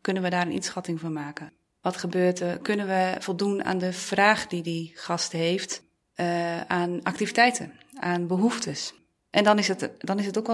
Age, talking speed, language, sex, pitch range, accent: 30-49, 180 wpm, Dutch, female, 165-190 Hz, Dutch